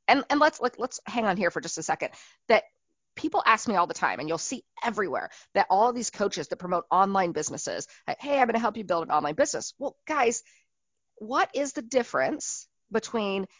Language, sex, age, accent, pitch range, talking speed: English, female, 40-59, American, 195-265 Hz, 220 wpm